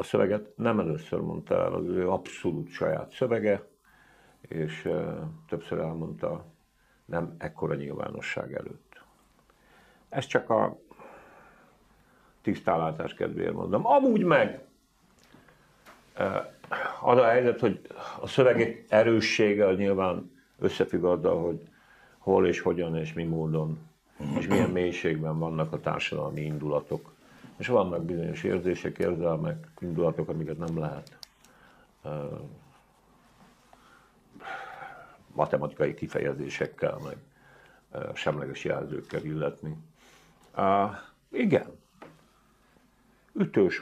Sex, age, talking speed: male, 50-69, 95 wpm